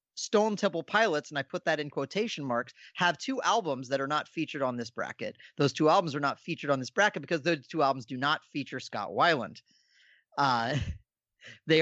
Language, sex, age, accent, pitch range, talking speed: English, male, 30-49, American, 125-160 Hz, 205 wpm